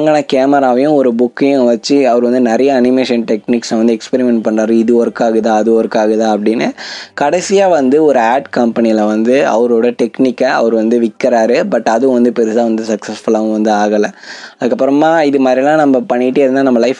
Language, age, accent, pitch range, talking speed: Tamil, 20-39, native, 115-140 Hz, 160 wpm